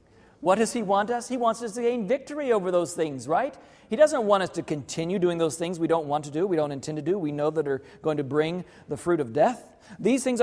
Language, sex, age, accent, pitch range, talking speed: English, male, 40-59, American, 160-215 Hz, 270 wpm